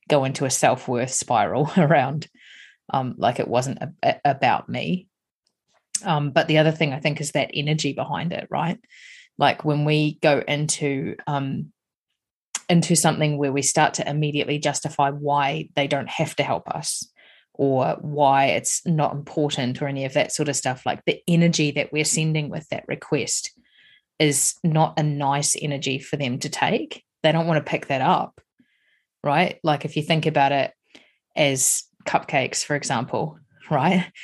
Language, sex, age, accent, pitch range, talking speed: English, female, 30-49, Australian, 145-170 Hz, 165 wpm